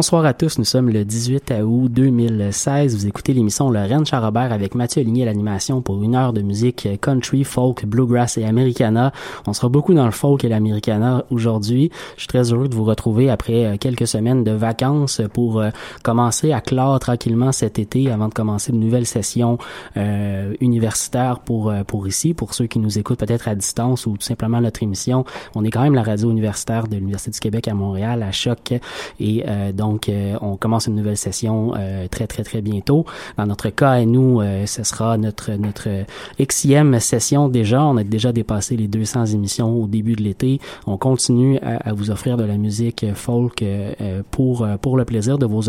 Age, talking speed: 20-39, 200 wpm